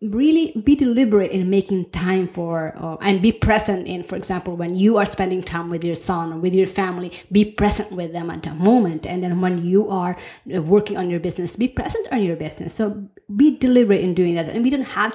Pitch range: 175-215 Hz